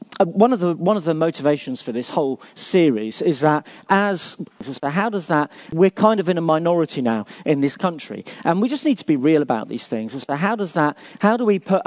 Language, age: English, 40-59